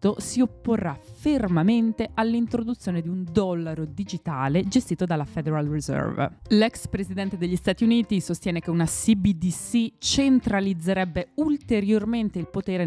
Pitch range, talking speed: 145-190 Hz, 115 wpm